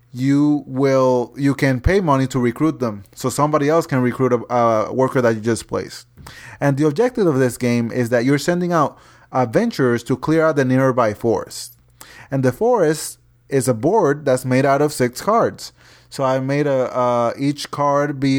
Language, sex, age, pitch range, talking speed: English, male, 30-49, 120-145 Hz, 195 wpm